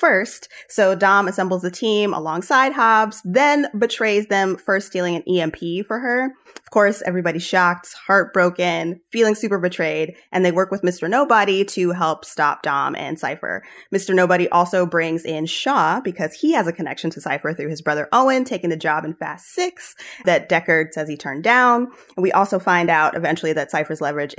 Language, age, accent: English, 20-39, American